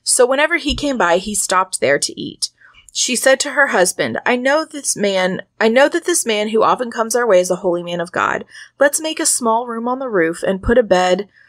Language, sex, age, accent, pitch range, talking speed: English, female, 20-39, American, 190-260 Hz, 245 wpm